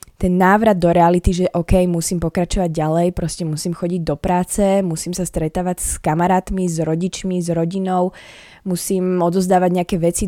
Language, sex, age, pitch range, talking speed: Slovak, female, 20-39, 165-190 Hz, 160 wpm